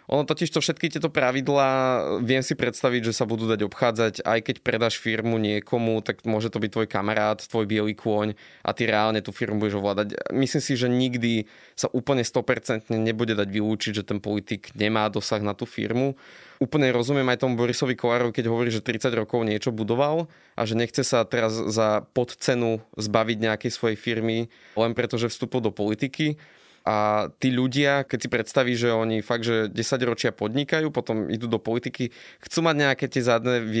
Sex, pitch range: male, 110-130 Hz